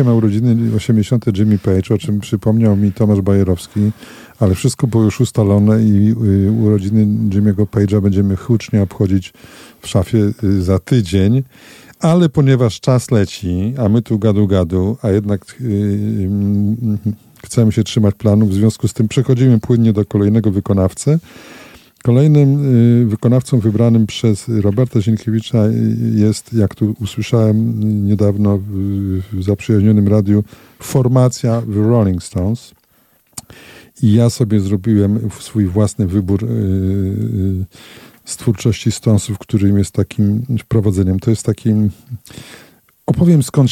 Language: Polish